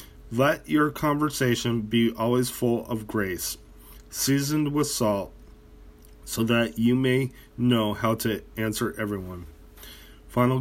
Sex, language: male, English